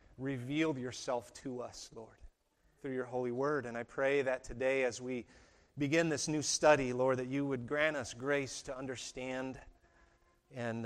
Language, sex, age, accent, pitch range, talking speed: English, male, 30-49, American, 115-140 Hz, 165 wpm